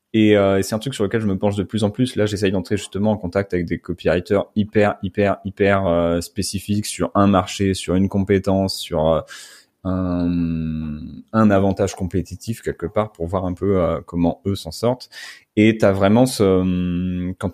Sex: male